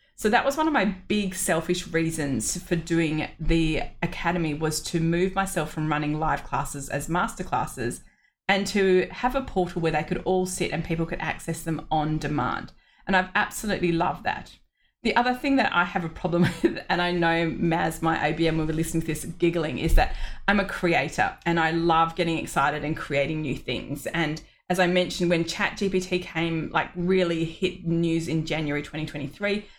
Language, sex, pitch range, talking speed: English, female, 160-195 Hz, 195 wpm